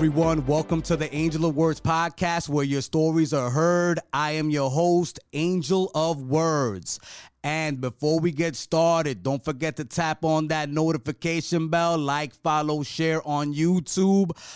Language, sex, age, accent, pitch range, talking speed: English, male, 30-49, American, 145-170 Hz, 155 wpm